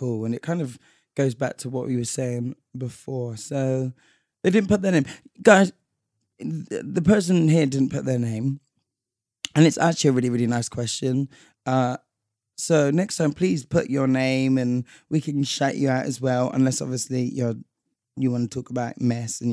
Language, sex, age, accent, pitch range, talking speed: English, male, 20-39, British, 125-150 Hz, 185 wpm